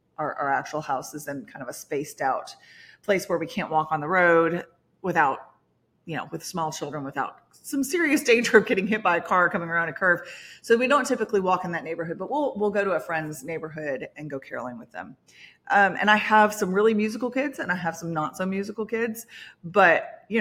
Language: English